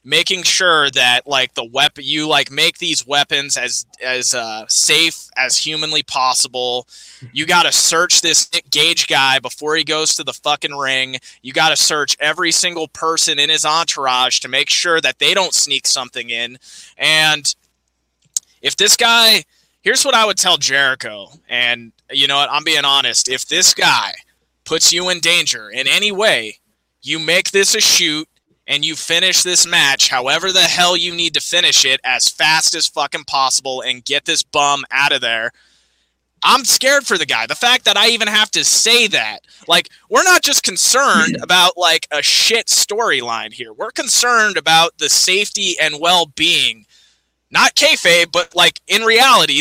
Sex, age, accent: male, 20-39, American